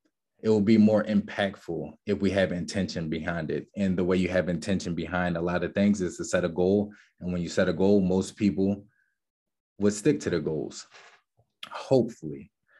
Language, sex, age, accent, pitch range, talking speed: English, male, 20-39, American, 95-105 Hz, 190 wpm